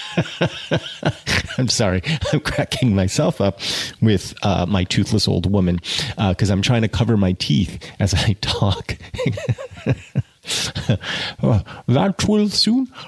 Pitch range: 95-125 Hz